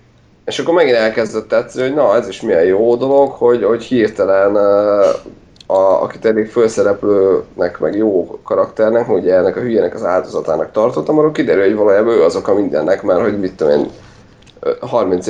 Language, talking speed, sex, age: Hungarian, 175 wpm, male, 30-49